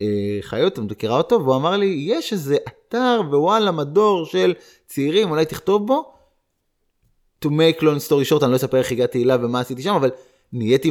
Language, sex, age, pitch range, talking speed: Hebrew, male, 20-39, 120-165 Hz, 175 wpm